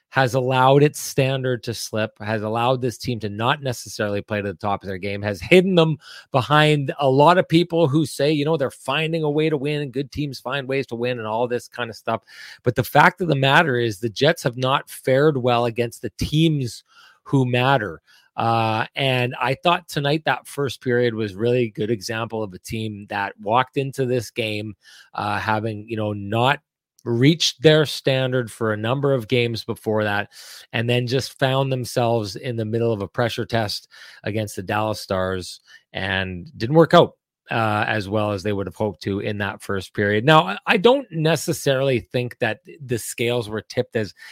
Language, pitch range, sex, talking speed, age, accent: English, 110-140 Hz, male, 200 wpm, 30-49, American